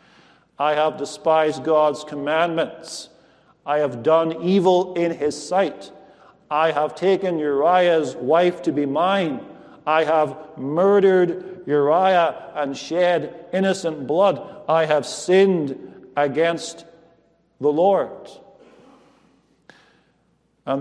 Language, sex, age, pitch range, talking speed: English, male, 50-69, 160-200 Hz, 100 wpm